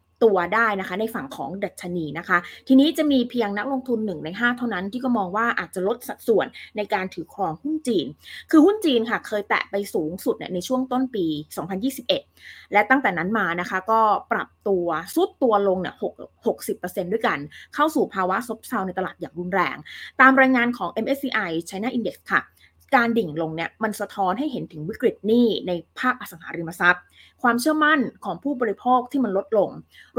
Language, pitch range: Thai, 185-255 Hz